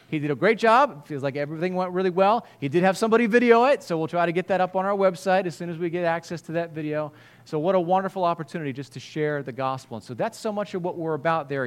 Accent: American